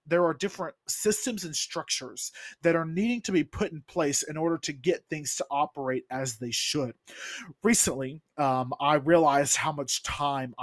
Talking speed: 175 wpm